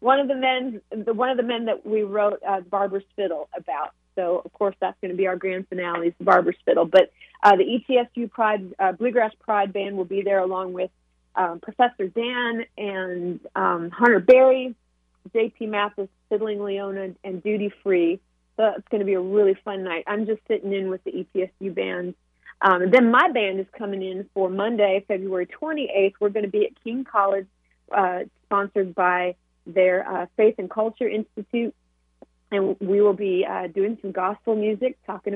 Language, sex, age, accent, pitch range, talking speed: English, female, 30-49, American, 185-215 Hz, 190 wpm